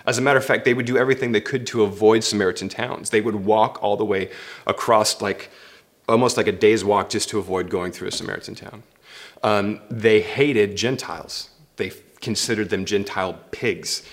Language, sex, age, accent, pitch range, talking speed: English, male, 30-49, American, 105-130 Hz, 190 wpm